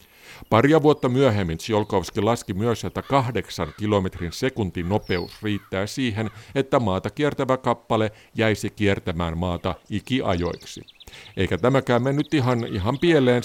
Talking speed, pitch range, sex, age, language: 110 wpm, 90-120 Hz, male, 50-69, Finnish